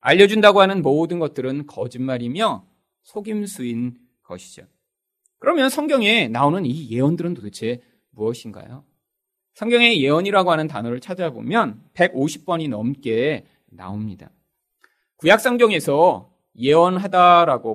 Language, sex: Korean, male